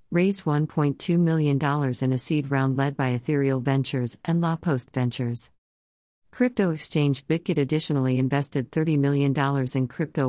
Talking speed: 140 wpm